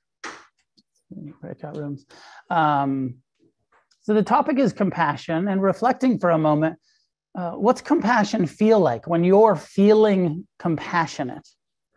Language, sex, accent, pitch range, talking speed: English, male, American, 150-185 Hz, 110 wpm